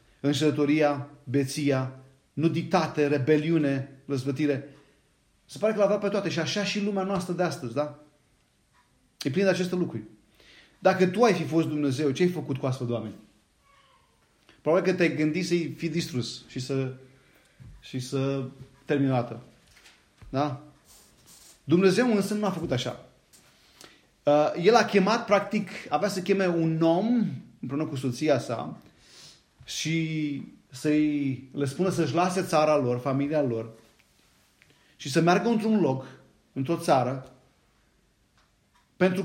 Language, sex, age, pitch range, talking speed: Romanian, male, 30-49, 140-180 Hz, 135 wpm